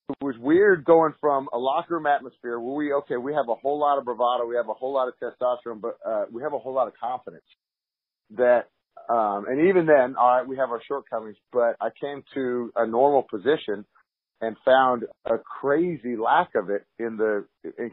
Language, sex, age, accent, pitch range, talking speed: English, male, 40-59, American, 115-140 Hz, 210 wpm